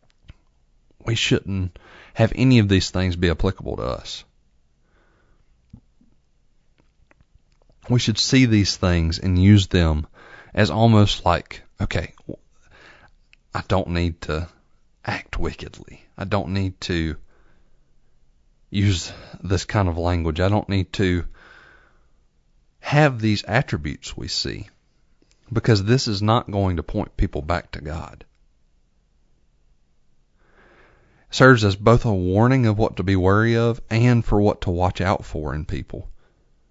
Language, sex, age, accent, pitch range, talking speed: English, male, 40-59, American, 85-110 Hz, 130 wpm